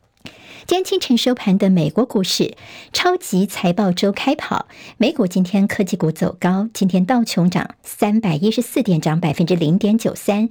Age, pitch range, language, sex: 50-69, 175-225 Hz, Chinese, male